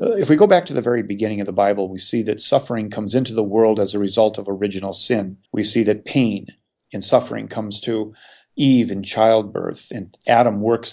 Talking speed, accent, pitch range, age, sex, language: 215 wpm, American, 105-125 Hz, 40-59, male, English